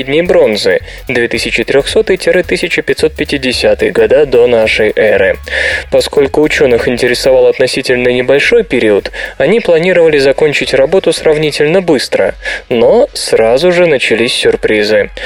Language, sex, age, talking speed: Russian, male, 20-39, 95 wpm